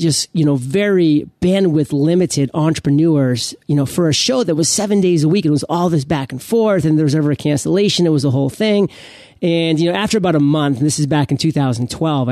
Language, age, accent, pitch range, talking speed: English, 30-49, American, 135-165 Hz, 240 wpm